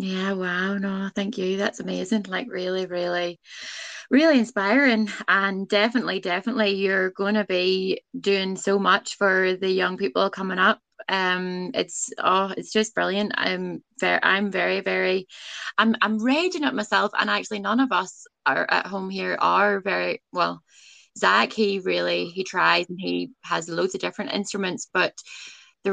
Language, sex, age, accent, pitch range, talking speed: English, female, 20-39, British, 185-220 Hz, 165 wpm